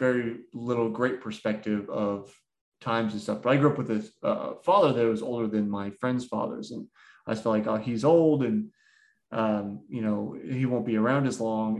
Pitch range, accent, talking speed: 110-145 Hz, American, 205 wpm